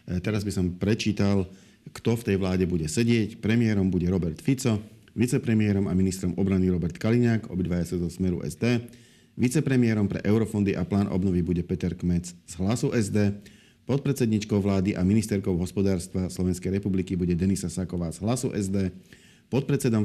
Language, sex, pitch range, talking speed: Slovak, male, 95-110 Hz, 155 wpm